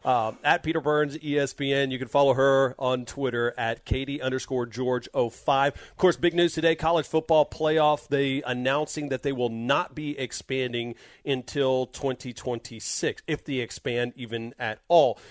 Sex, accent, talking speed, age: male, American, 155 wpm, 40-59